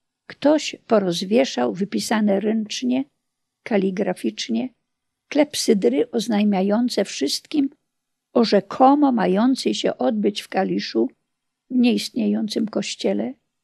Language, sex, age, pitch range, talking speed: Polish, female, 50-69, 190-240 Hz, 80 wpm